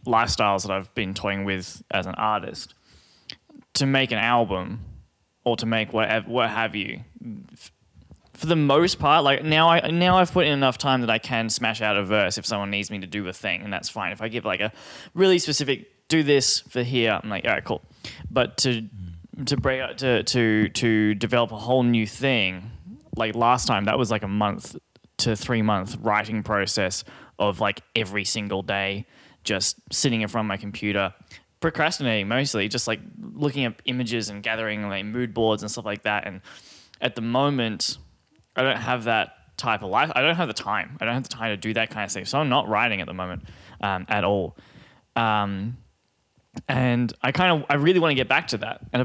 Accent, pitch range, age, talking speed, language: Australian, 105-130 Hz, 20-39, 210 wpm, English